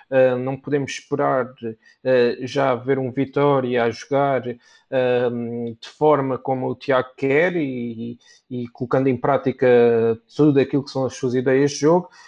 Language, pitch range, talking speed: Portuguese, 130-150 Hz, 160 wpm